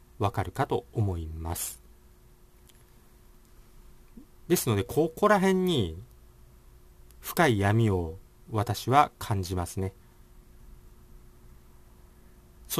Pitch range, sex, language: 95-120 Hz, male, Japanese